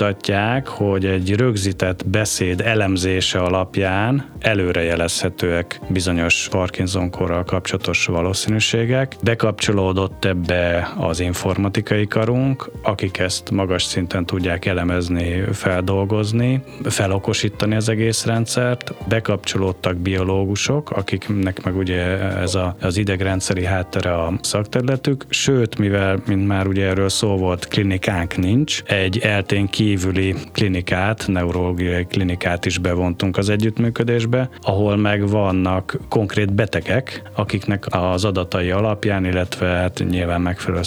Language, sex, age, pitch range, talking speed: Hungarian, male, 30-49, 90-110 Hz, 105 wpm